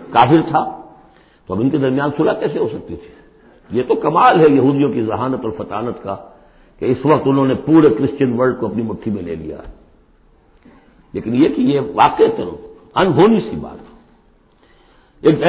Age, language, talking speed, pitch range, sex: 60-79, Urdu, 180 wpm, 140-215 Hz, male